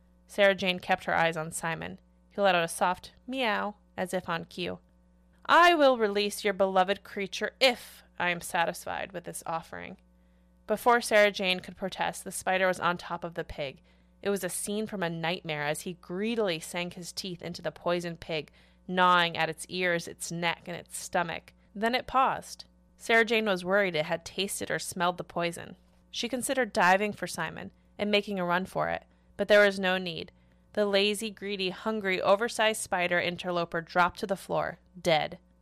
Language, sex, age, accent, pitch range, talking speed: English, female, 20-39, American, 165-195 Hz, 185 wpm